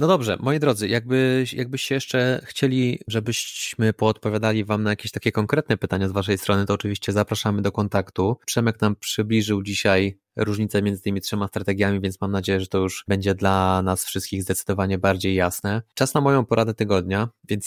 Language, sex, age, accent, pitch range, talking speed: Polish, male, 20-39, native, 100-120 Hz, 175 wpm